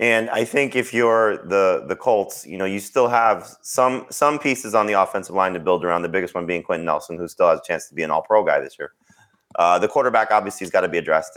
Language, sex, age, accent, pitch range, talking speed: English, male, 30-49, American, 85-110 Hz, 265 wpm